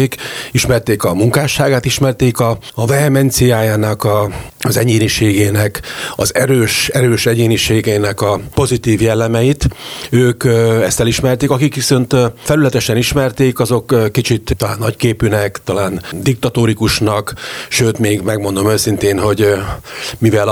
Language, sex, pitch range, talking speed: Hungarian, male, 105-125 Hz, 95 wpm